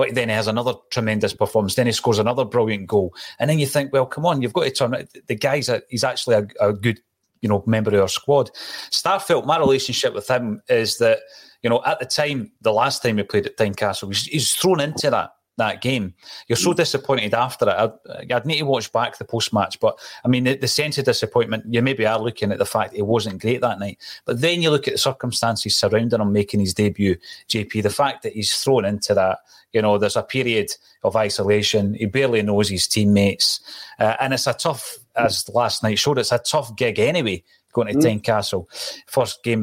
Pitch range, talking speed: 105-135 Hz, 225 wpm